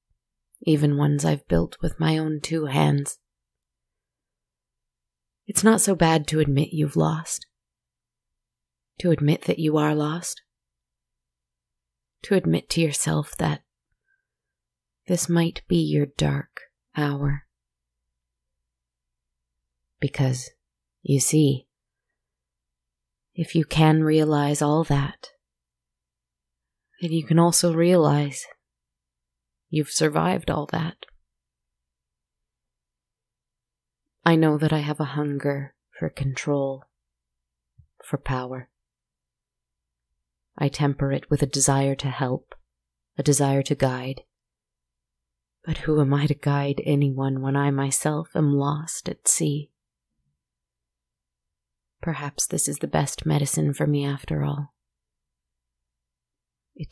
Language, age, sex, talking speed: English, 30-49, female, 105 wpm